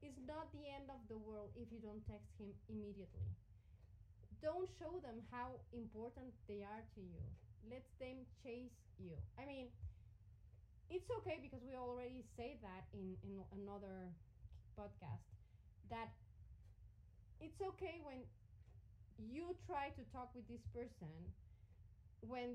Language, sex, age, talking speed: English, female, 30-49, 135 wpm